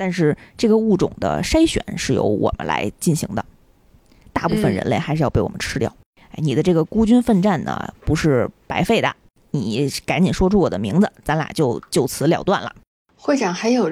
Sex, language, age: female, Chinese, 20-39